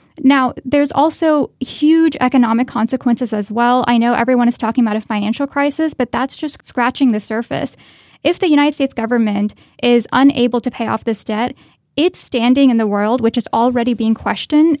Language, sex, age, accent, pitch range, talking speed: English, female, 10-29, American, 225-270 Hz, 180 wpm